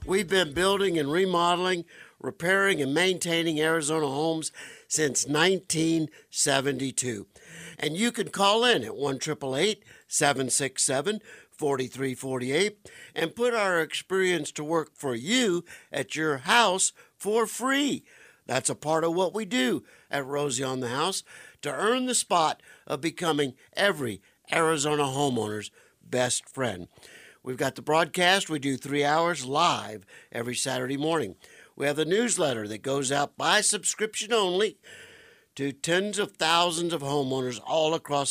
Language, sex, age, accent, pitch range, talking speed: English, male, 60-79, American, 135-185 Hz, 135 wpm